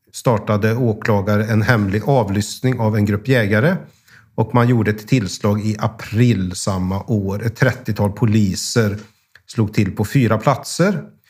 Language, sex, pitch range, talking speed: Swedish, male, 105-130 Hz, 140 wpm